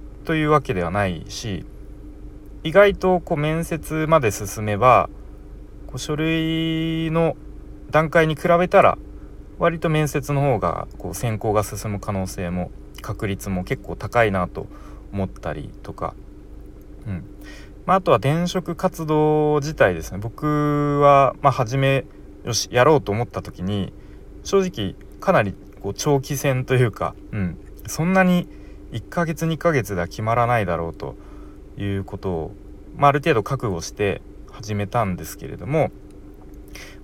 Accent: native